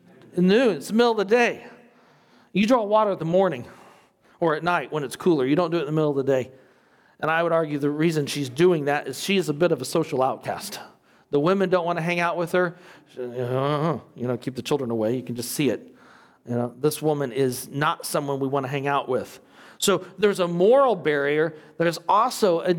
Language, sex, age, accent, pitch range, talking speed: English, male, 40-59, American, 155-215 Hz, 230 wpm